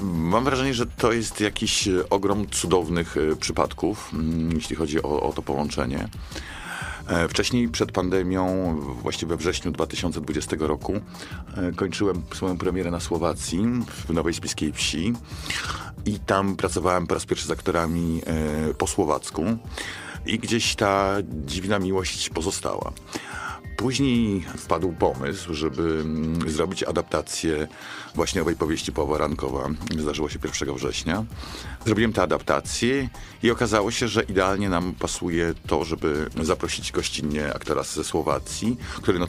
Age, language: 50-69, Polish